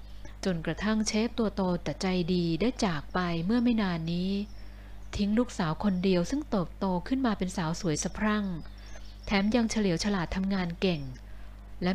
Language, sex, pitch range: Thai, female, 155-215 Hz